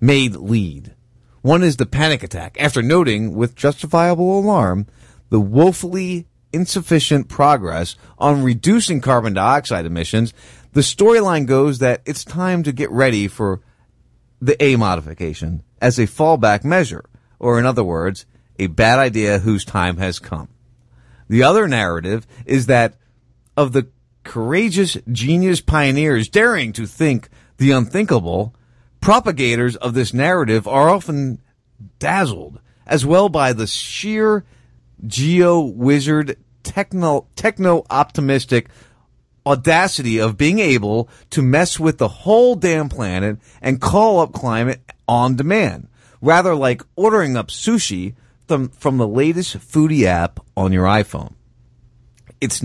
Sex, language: male, English